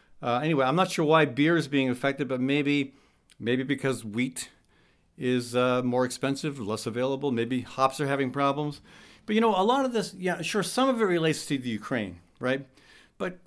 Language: English